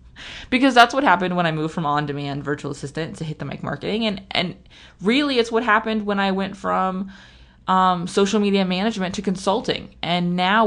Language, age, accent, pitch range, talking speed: English, 20-39, American, 155-195 Hz, 190 wpm